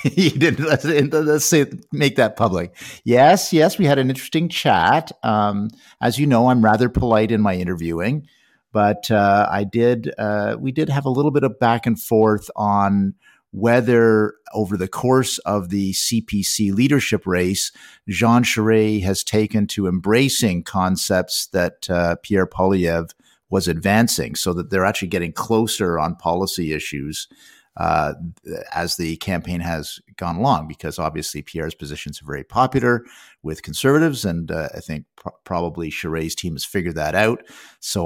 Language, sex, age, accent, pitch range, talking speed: English, male, 50-69, American, 85-115 Hz, 160 wpm